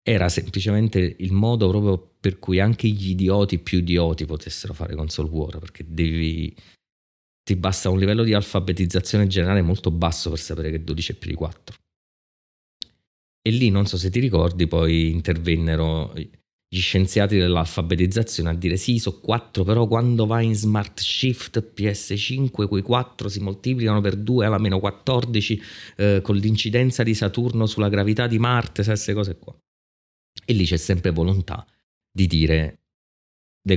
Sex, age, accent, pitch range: male, 30-49, native, 85-110 Hz